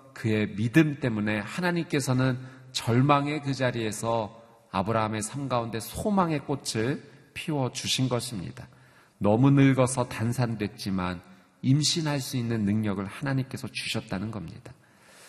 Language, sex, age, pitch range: Korean, male, 40-59, 115-150 Hz